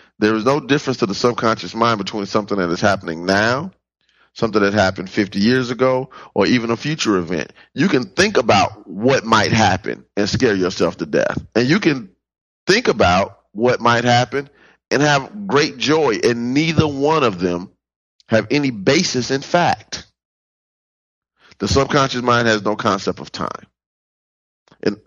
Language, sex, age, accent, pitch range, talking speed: English, male, 30-49, American, 85-125 Hz, 165 wpm